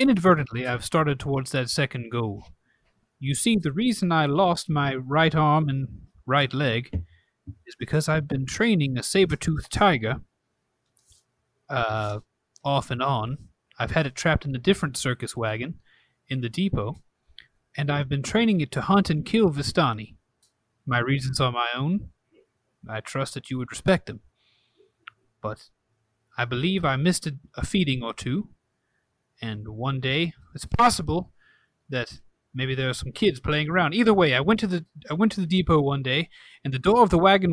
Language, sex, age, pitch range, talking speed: English, male, 30-49, 120-165 Hz, 170 wpm